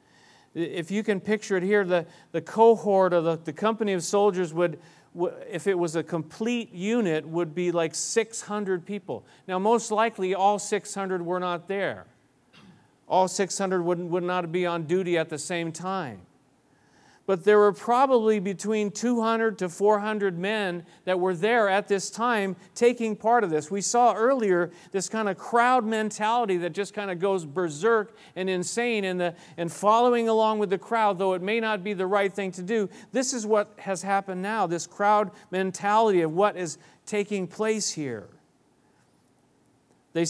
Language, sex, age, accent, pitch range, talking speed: English, male, 40-59, American, 175-210 Hz, 175 wpm